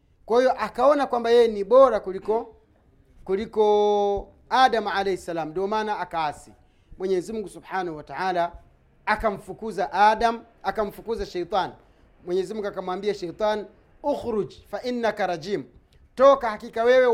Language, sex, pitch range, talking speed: Swahili, male, 195-250 Hz, 115 wpm